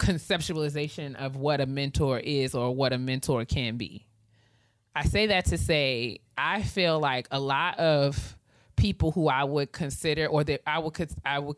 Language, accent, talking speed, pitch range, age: English, American, 175 wpm, 130-160 Hz, 20-39